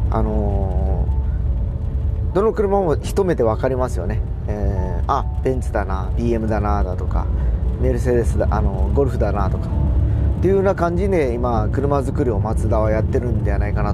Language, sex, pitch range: Japanese, male, 90-110 Hz